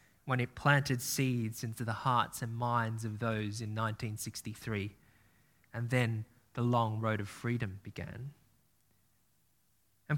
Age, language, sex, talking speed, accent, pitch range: 20-39, English, male, 130 wpm, Australian, 115-175 Hz